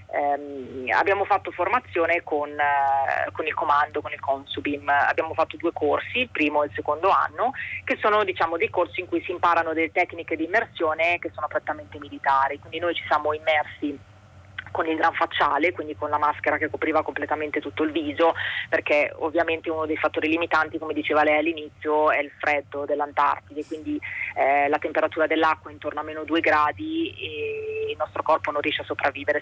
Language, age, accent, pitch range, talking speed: Italian, 20-39, native, 150-175 Hz, 185 wpm